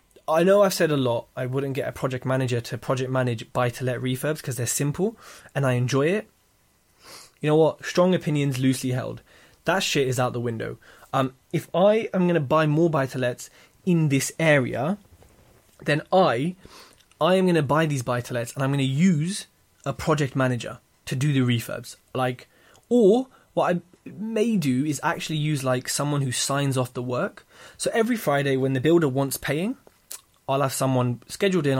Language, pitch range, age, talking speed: English, 130-170 Hz, 20-39, 185 wpm